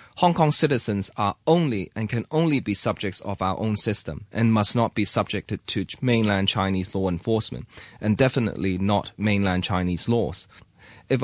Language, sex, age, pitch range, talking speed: English, male, 20-39, 100-125 Hz, 165 wpm